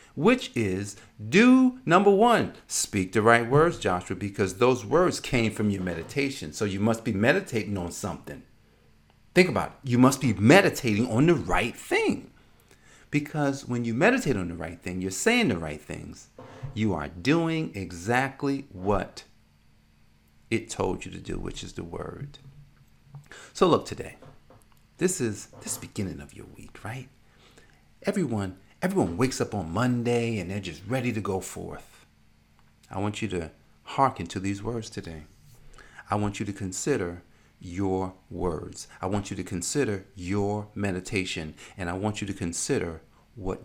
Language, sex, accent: English, male, American